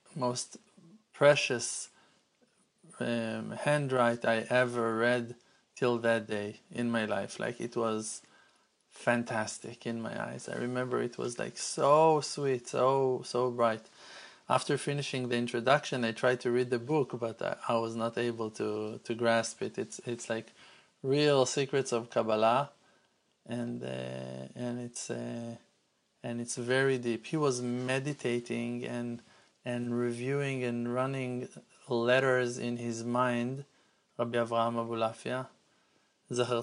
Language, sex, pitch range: English, male, 120-130 Hz